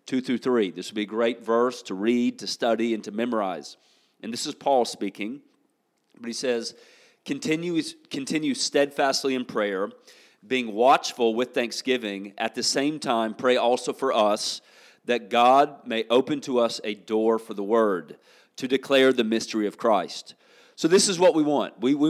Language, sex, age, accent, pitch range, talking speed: English, male, 40-59, American, 115-145 Hz, 180 wpm